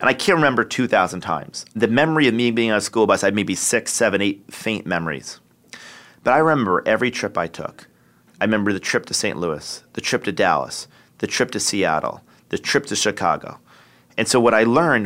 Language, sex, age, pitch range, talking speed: English, male, 30-49, 95-115 Hz, 215 wpm